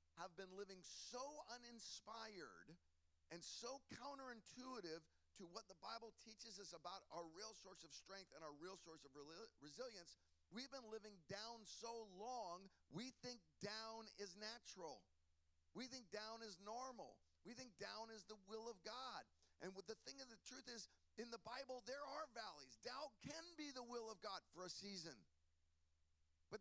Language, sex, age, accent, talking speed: English, male, 40-59, American, 170 wpm